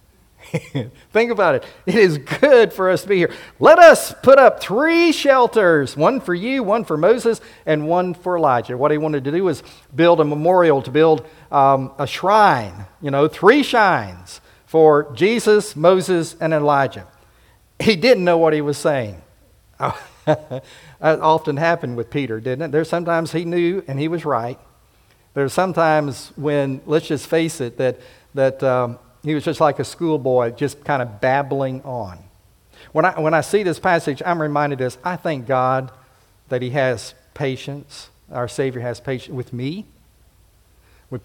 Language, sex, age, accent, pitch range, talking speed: English, male, 50-69, American, 125-165 Hz, 170 wpm